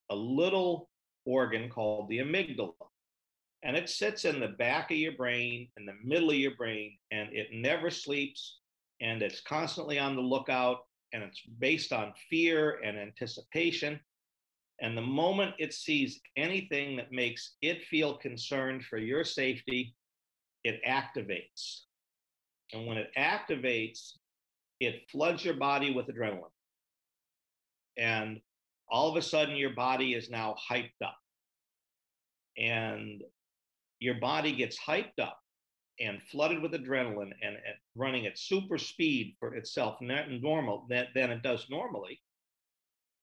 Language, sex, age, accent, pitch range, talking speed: English, male, 50-69, American, 115-155 Hz, 140 wpm